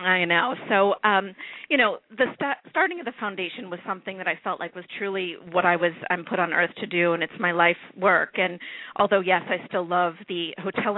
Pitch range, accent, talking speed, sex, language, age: 180-215 Hz, American, 235 wpm, female, English, 40-59